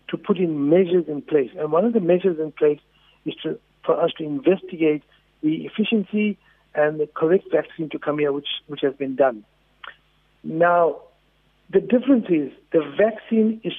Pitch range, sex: 155-200 Hz, male